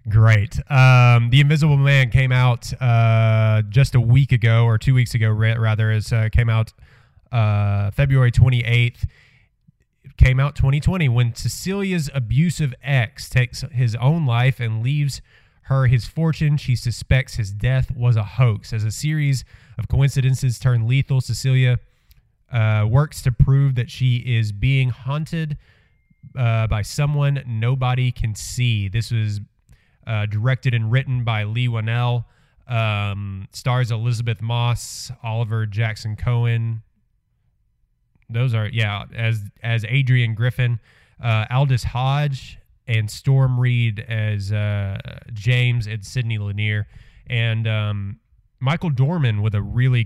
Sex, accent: male, American